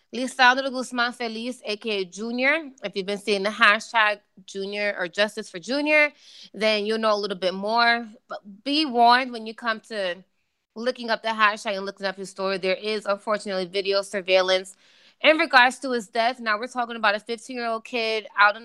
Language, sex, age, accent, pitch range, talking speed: English, female, 20-39, American, 200-250 Hz, 185 wpm